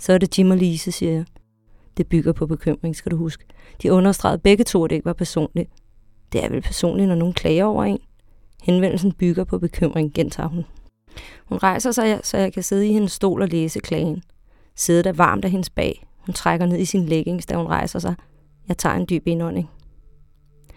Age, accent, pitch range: 30-49, Danish, 170-205 Hz